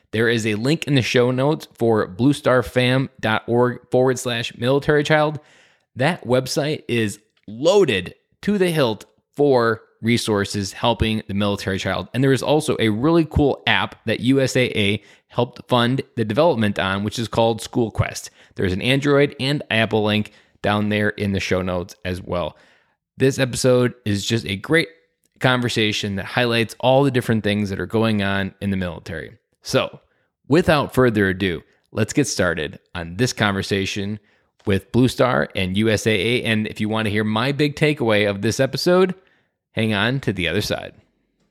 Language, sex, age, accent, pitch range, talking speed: English, male, 20-39, American, 105-140 Hz, 165 wpm